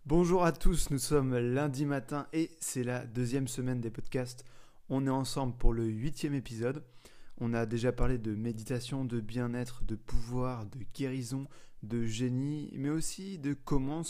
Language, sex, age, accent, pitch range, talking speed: French, male, 20-39, French, 120-145 Hz, 165 wpm